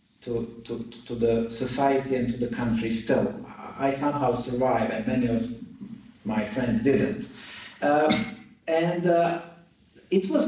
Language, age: English, 50-69